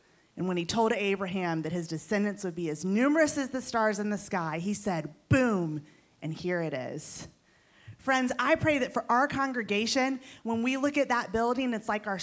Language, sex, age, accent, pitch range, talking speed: English, female, 30-49, American, 195-270 Hz, 200 wpm